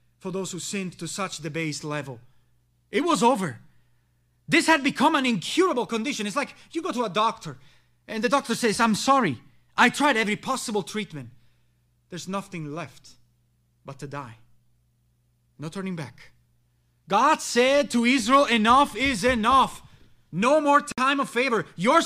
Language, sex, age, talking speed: English, male, 30-49, 155 wpm